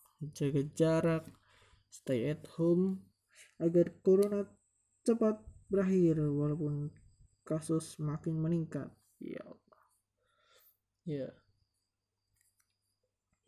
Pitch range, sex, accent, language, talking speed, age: 100-160 Hz, male, native, Indonesian, 65 wpm, 20-39